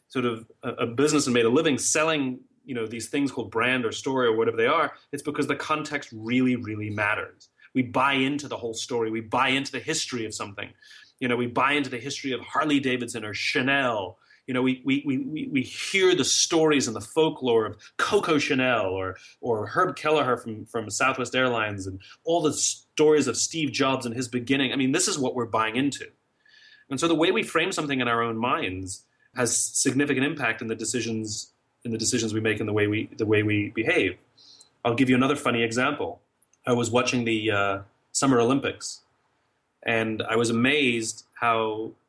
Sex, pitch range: male, 115-145 Hz